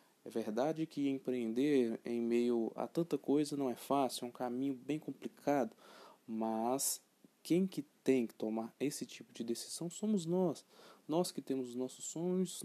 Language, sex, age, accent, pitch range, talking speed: Portuguese, male, 20-39, Brazilian, 130-180 Hz, 165 wpm